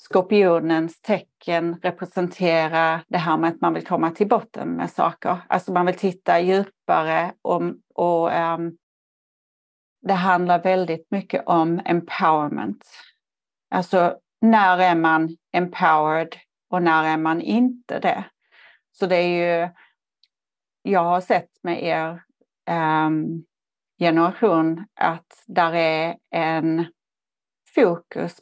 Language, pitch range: Swedish, 165-185 Hz